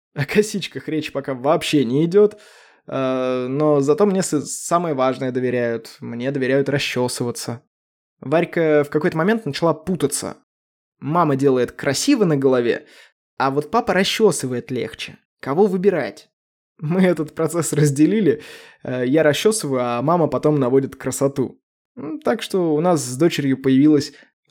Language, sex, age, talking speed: Russian, male, 20-39, 125 wpm